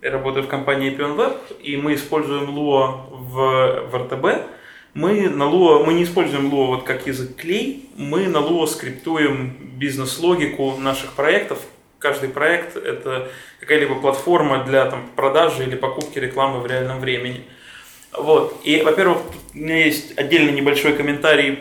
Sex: male